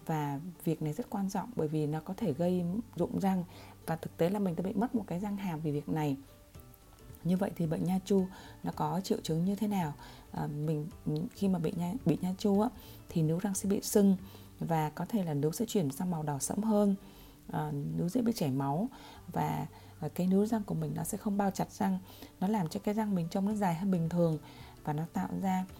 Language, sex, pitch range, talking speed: Vietnamese, female, 150-200 Hz, 240 wpm